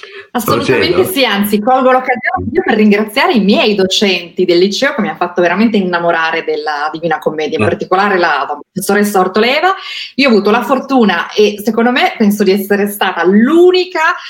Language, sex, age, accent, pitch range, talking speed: Italian, female, 30-49, native, 180-225 Hz, 165 wpm